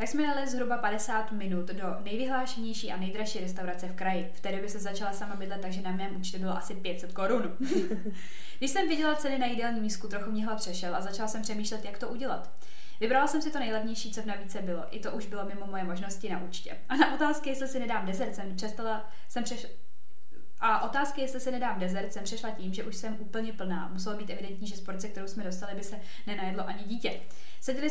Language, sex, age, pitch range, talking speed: Czech, female, 20-39, 195-245 Hz, 220 wpm